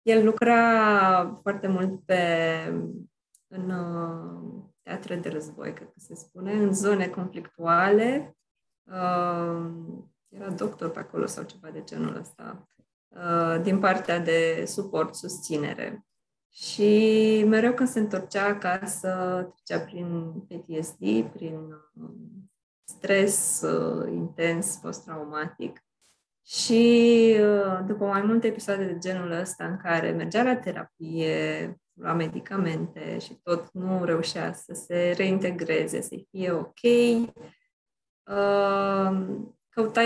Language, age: Romanian, 20-39